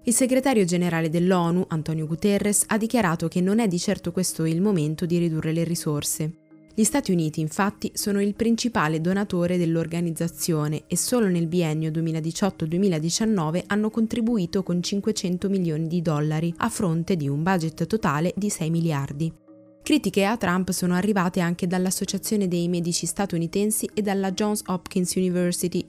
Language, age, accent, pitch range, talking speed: Italian, 20-39, native, 165-200 Hz, 150 wpm